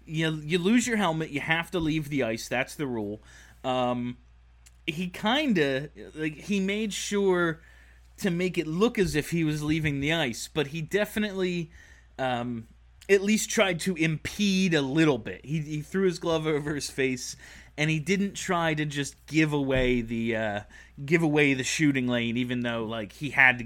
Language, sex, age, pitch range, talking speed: English, male, 30-49, 130-190 Hz, 190 wpm